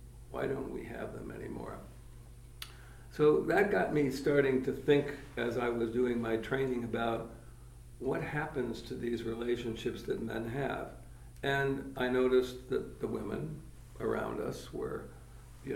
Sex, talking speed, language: male, 145 wpm, English